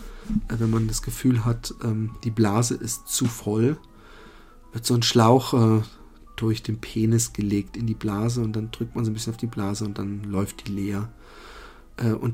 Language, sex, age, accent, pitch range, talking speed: German, male, 40-59, German, 110-140 Hz, 180 wpm